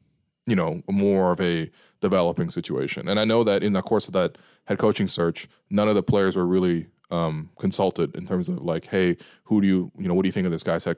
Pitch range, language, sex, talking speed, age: 90-105 Hz, English, male, 245 wpm, 20-39